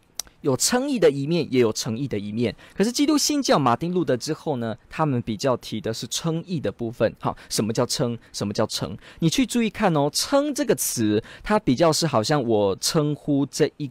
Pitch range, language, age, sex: 120-195 Hz, Chinese, 20-39, male